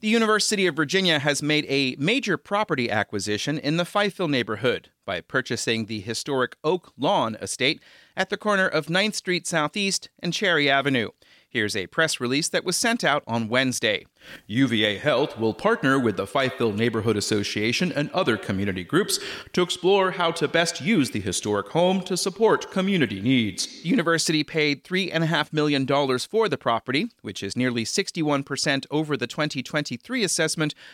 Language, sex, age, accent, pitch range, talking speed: English, male, 30-49, American, 120-175 Hz, 160 wpm